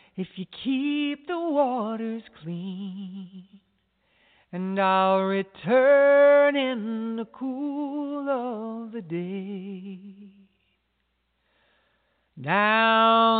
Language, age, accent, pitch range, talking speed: English, 40-59, American, 195-290 Hz, 70 wpm